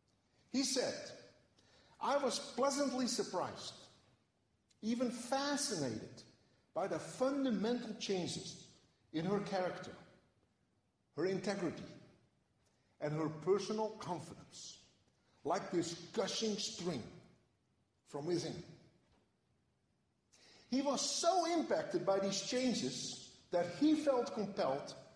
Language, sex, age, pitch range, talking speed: English, male, 50-69, 175-250 Hz, 90 wpm